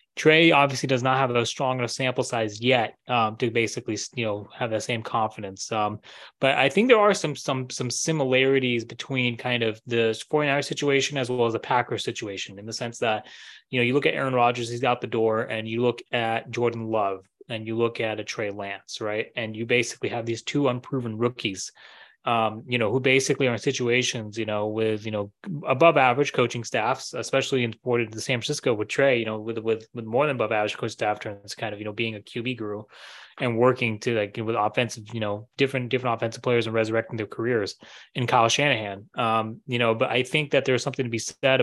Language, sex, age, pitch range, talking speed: English, male, 20-39, 110-135 Hz, 225 wpm